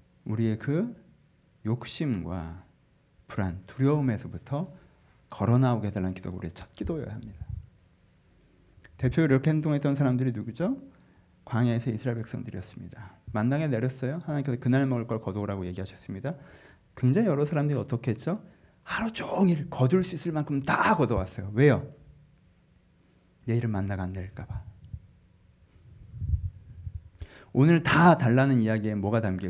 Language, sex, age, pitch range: Korean, male, 40-59, 95-130 Hz